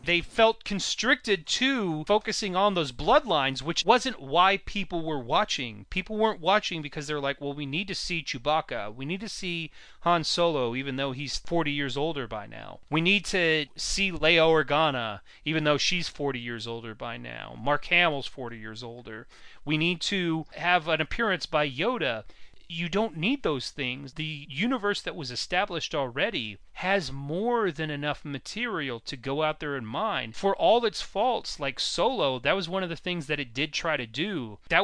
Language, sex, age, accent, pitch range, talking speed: English, male, 30-49, American, 140-180 Hz, 185 wpm